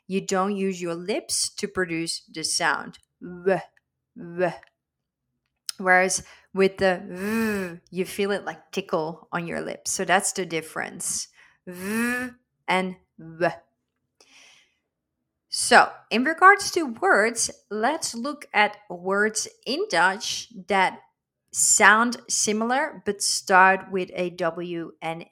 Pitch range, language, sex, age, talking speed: 170-205 Hz, Dutch, female, 30-49, 115 wpm